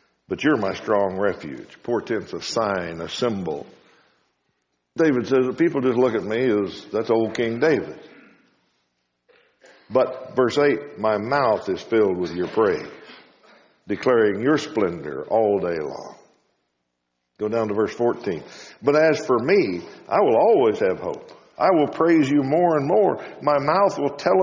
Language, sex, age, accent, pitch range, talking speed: English, male, 60-79, American, 105-160 Hz, 155 wpm